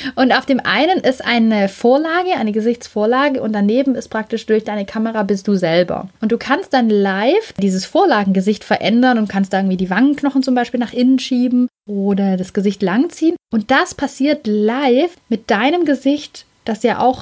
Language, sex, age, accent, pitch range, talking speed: German, female, 30-49, German, 220-280 Hz, 180 wpm